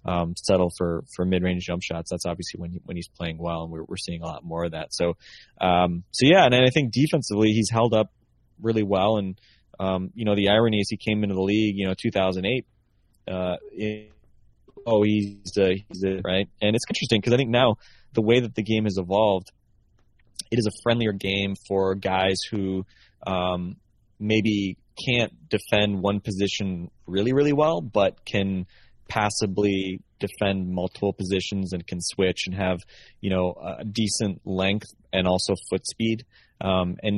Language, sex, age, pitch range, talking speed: English, male, 20-39, 95-110 Hz, 185 wpm